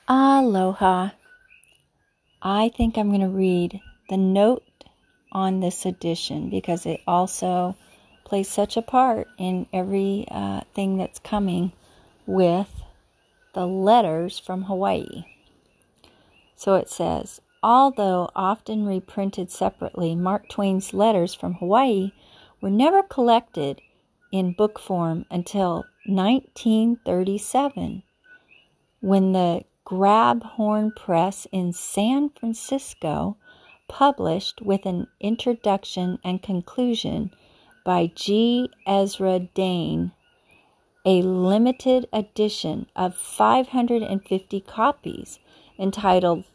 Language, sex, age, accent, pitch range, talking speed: English, female, 40-59, American, 180-225 Hz, 95 wpm